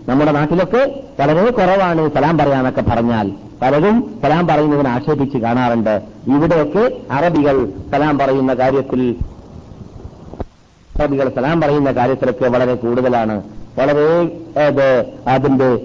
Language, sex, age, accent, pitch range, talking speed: Malayalam, male, 50-69, native, 125-180 Hz, 85 wpm